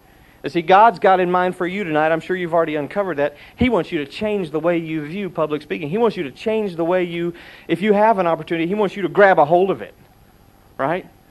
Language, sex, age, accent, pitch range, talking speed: English, male, 40-59, American, 125-180 Hz, 260 wpm